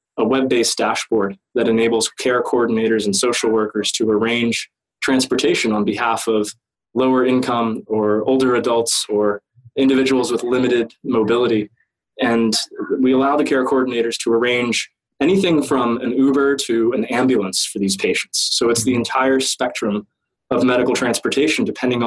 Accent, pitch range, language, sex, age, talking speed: American, 110-130 Hz, English, male, 20-39, 145 wpm